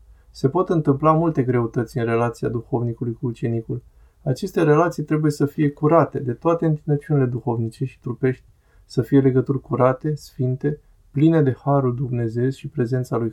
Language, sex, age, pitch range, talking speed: Romanian, male, 20-39, 120-145 Hz, 155 wpm